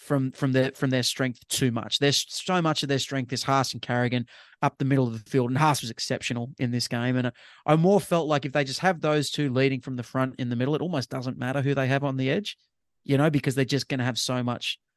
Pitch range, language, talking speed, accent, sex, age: 130-155 Hz, English, 280 wpm, Australian, male, 30-49